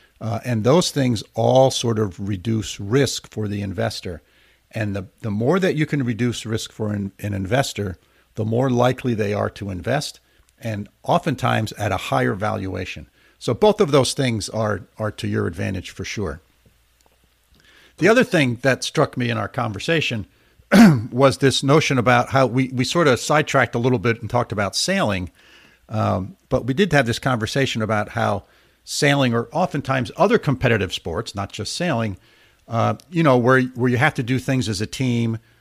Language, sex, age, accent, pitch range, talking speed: English, male, 50-69, American, 105-135 Hz, 180 wpm